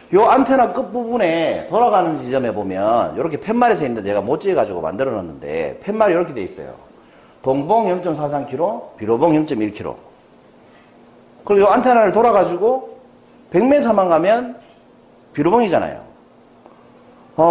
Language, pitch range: Korean, 125-205 Hz